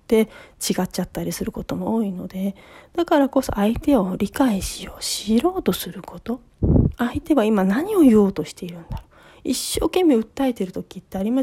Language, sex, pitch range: Japanese, female, 195-280 Hz